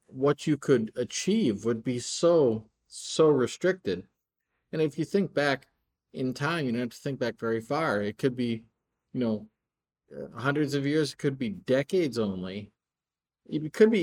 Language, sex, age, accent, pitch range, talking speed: English, male, 50-69, American, 110-145 Hz, 170 wpm